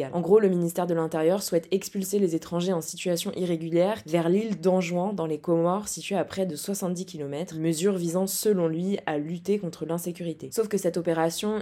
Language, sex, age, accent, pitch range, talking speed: French, female, 20-39, French, 165-195 Hz, 190 wpm